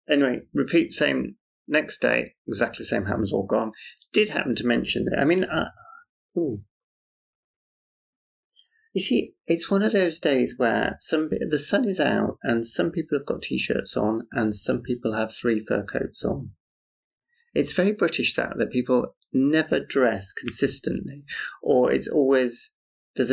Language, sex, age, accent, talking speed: English, male, 30-49, British, 155 wpm